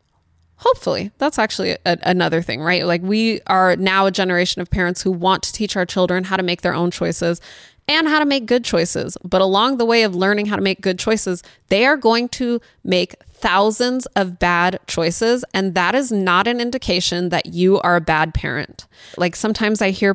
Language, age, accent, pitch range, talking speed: English, 20-39, American, 185-260 Hz, 205 wpm